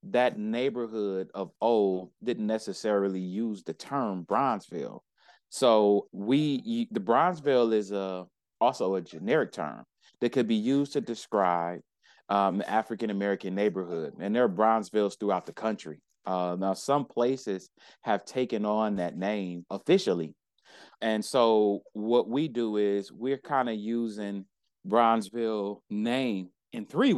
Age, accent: 30-49, American